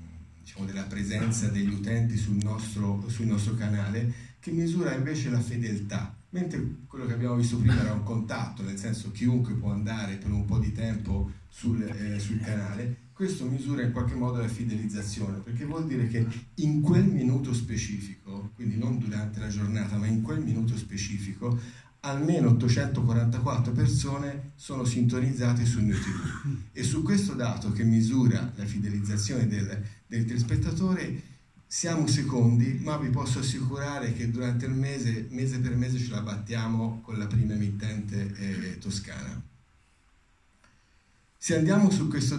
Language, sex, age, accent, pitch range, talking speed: Italian, male, 40-59, native, 105-125 Hz, 150 wpm